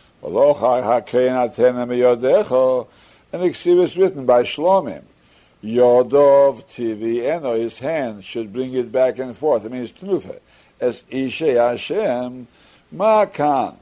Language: English